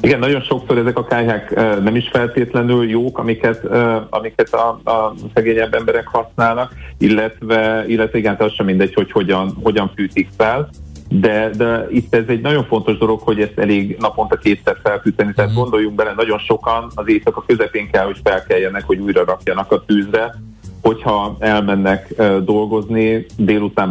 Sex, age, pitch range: male, 30-49, 95-115 Hz